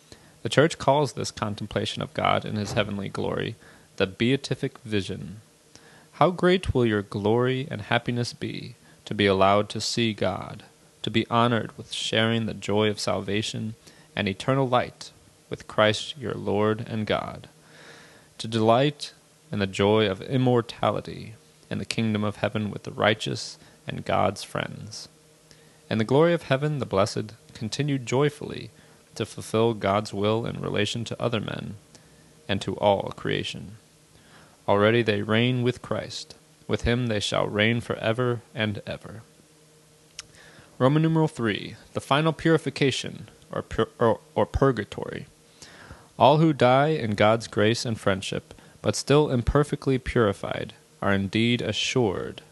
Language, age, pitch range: English, 30-49, 105-130 Hz